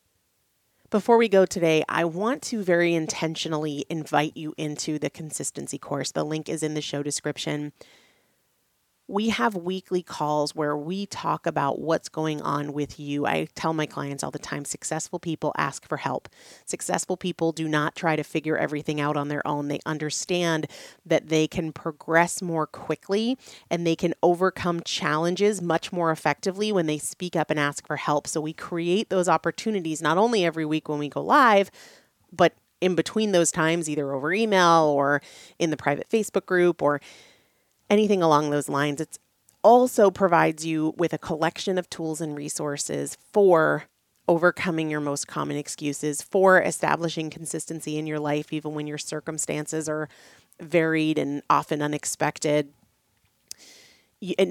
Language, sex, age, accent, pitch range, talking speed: English, female, 30-49, American, 150-175 Hz, 165 wpm